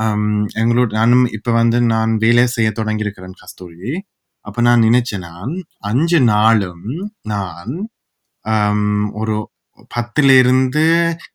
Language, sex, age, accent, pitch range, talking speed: Tamil, male, 20-39, native, 100-125 Hz, 55 wpm